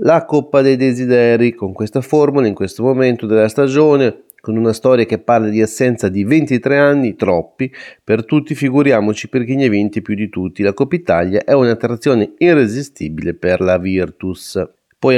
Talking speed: 175 wpm